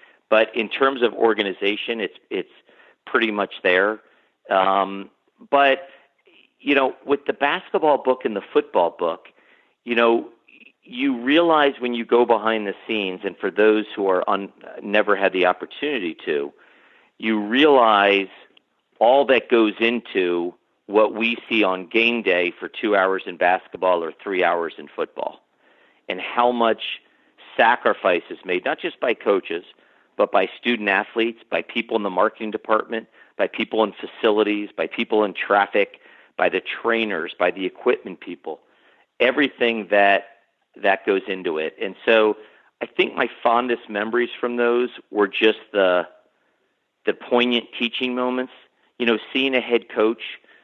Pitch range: 105-135 Hz